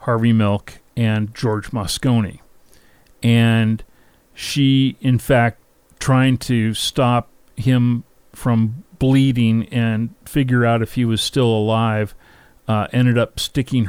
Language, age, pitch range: English, 40-59, 105-125 Hz